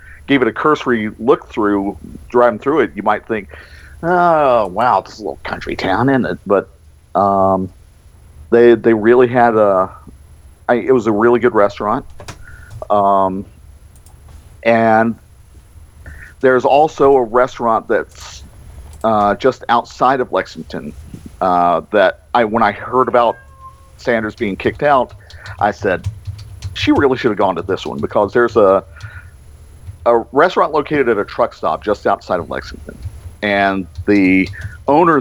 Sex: male